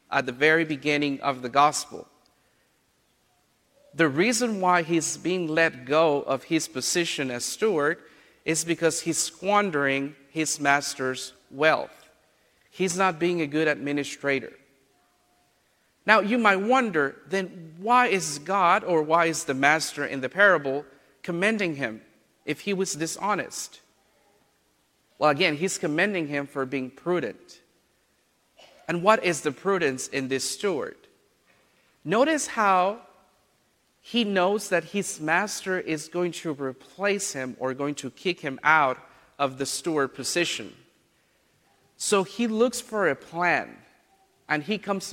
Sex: male